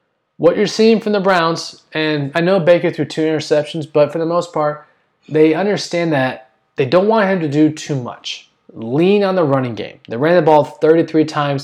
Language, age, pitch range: English, 20-39, 135-170 Hz